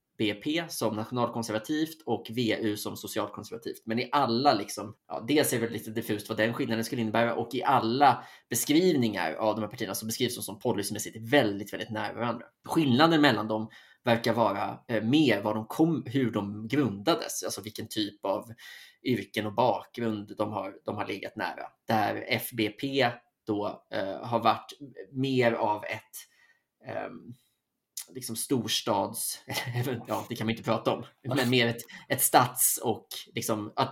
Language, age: Swedish, 20-39